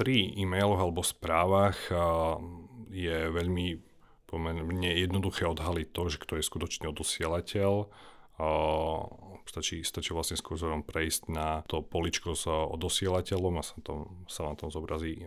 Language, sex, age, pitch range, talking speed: Slovak, male, 40-59, 80-90 Hz, 125 wpm